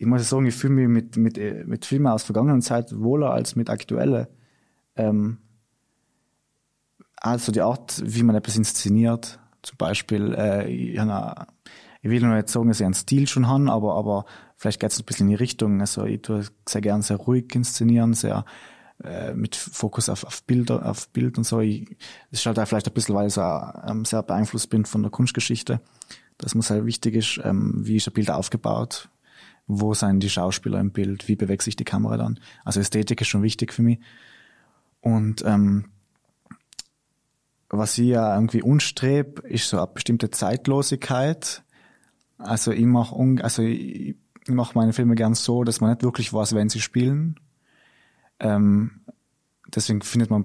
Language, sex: German, male